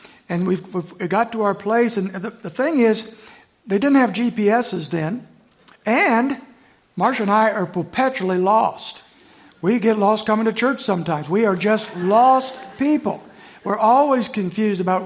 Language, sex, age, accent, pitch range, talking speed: English, male, 60-79, American, 180-230 Hz, 155 wpm